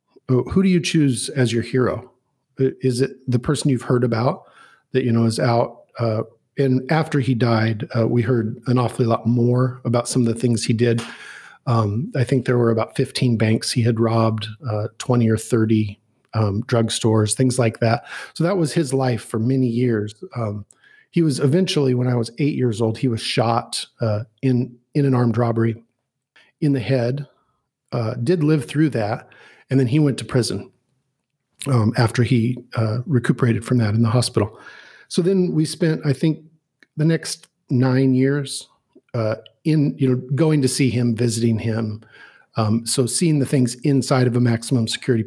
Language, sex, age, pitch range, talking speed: English, male, 40-59, 115-135 Hz, 185 wpm